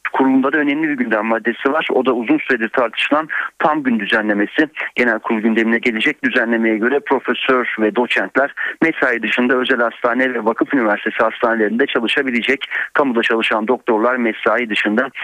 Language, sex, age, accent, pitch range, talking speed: Turkish, male, 40-59, native, 115-140 Hz, 150 wpm